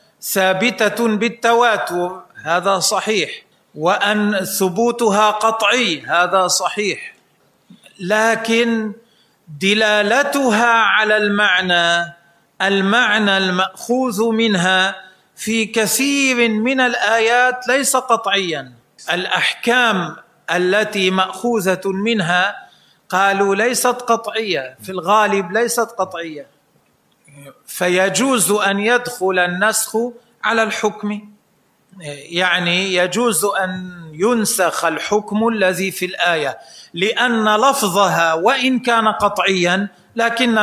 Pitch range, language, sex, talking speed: 175-225 Hz, Arabic, male, 80 wpm